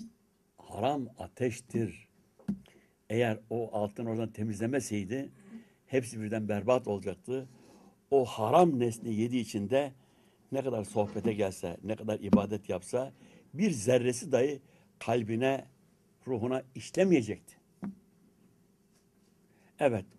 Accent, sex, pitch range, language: native, male, 110-170 Hz, Turkish